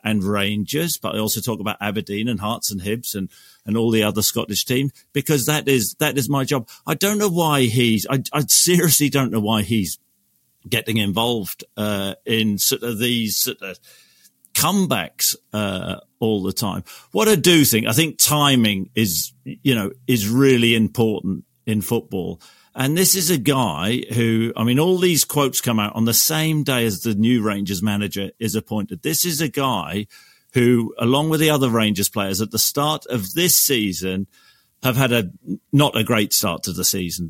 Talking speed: 190 wpm